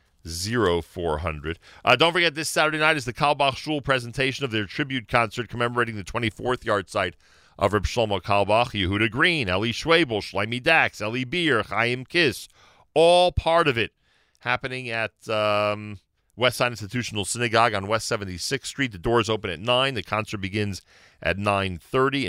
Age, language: 40-59, English